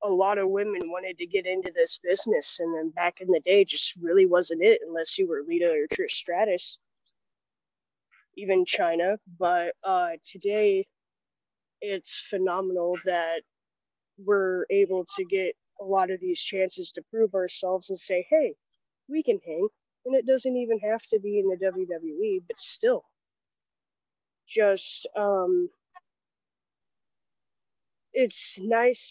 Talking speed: 140 wpm